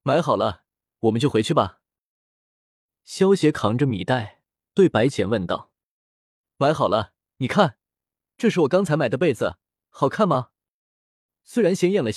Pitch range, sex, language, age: 110-165 Hz, male, Chinese, 20-39